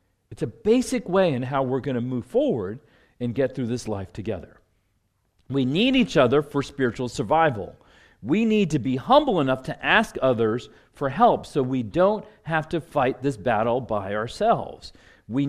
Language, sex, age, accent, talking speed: English, male, 40-59, American, 180 wpm